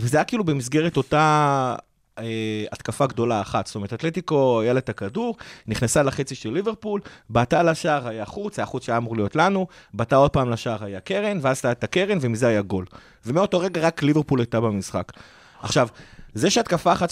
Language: Hebrew